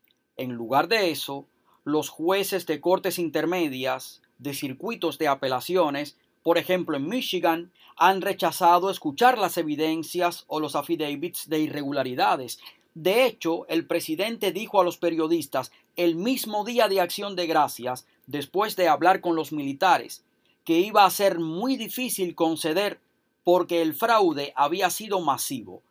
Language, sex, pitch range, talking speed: Spanish, male, 150-195 Hz, 140 wpm